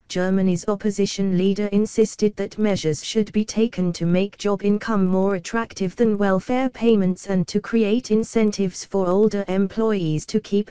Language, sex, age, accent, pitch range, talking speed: English, female, 20-39, British, 175-215 Hz, 150 wpm